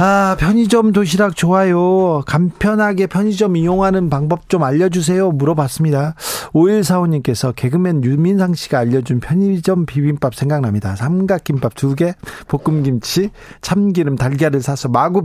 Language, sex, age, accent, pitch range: Korean, male, 40-59, native, 130-185 Hz